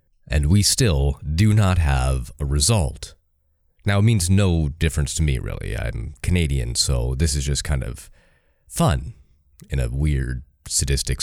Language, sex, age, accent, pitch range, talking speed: English, male, 30-49, American, 70-100 Hz, 155 wpm